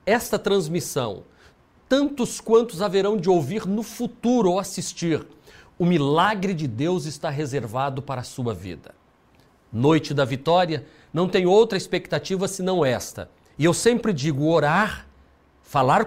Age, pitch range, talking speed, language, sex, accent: 40-59, 140-195 Hz, 135 wpm, Portuguese, male, Brazilian